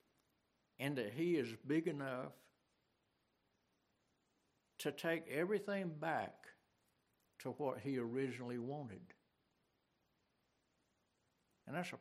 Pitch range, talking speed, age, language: 125-170 Hz, 90 wpm, 60-79, English